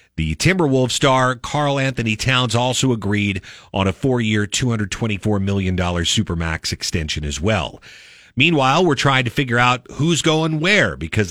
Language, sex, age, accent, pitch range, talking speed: English, male, 50-69, American, 105-140 Hz, 145 wpm